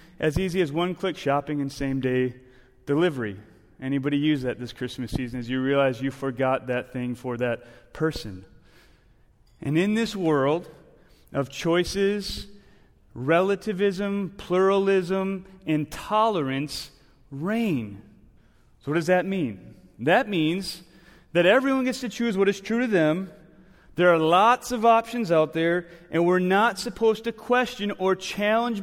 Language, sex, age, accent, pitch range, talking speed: English, male, 30-49, American, 135-190 Hz, 135 wpm